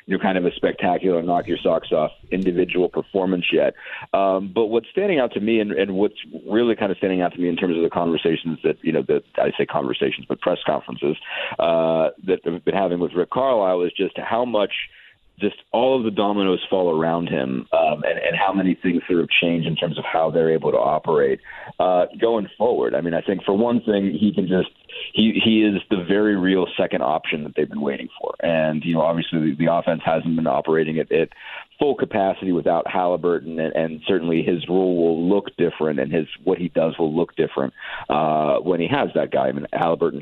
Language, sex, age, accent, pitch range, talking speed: English, male, 40-59, American, 80-100 Hz, 220 wpm